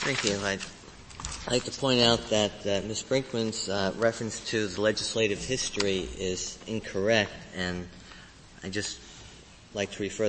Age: 30-49